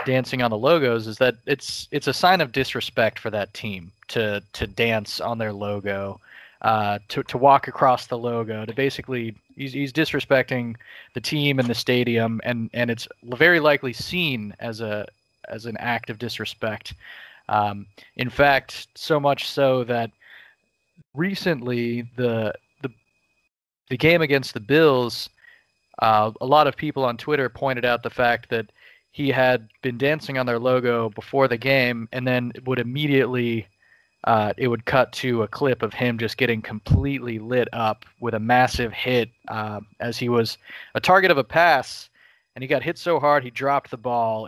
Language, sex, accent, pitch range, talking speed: English, male, American, 115-135 Hz, 175 wpm